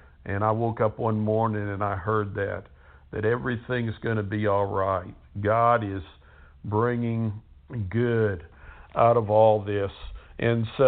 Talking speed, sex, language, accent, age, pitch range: 150 wpm, male, English, American, 60-79, 105-125 Hz